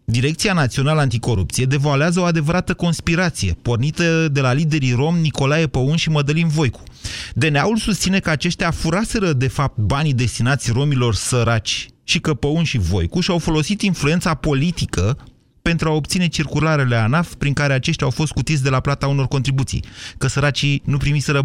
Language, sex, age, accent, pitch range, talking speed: Romanian, male, 30-49, native, 115-155 Hz, 160 wpm